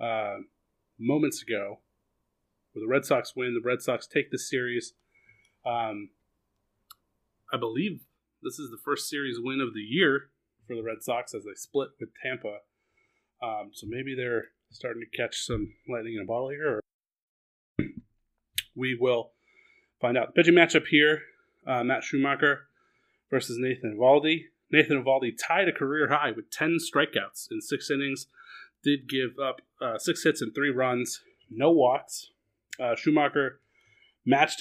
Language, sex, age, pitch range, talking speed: English, male, 30-49, 120-145 Hz, 155 wpm